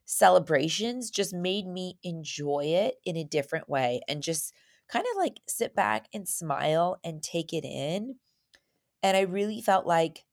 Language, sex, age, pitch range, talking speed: English, female, 20-39, 150-180 Hz, 165 wpm